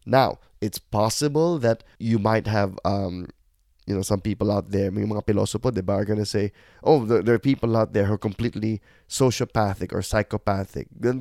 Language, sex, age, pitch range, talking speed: English, male, 20-39, 105-135 Hz, 160 wpm